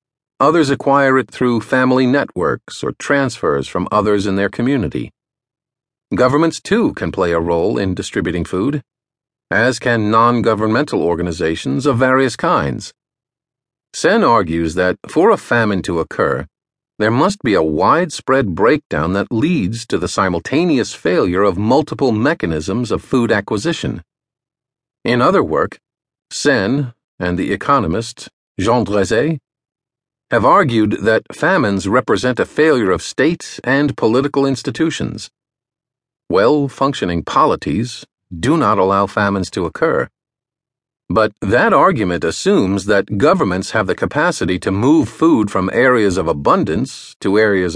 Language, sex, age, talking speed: English, male, 50-69, 130 wpm